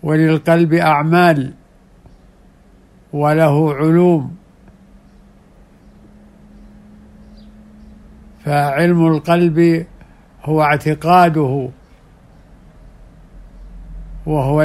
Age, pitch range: 60-79, 150-165 Hz